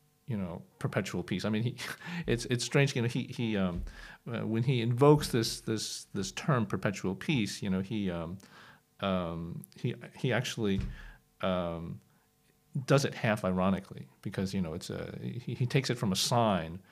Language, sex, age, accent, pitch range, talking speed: English, male, 40-59, American, 105-145 Hz, 175 wpm